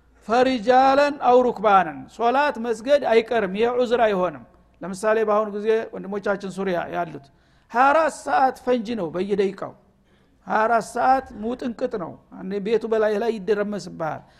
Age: 60-79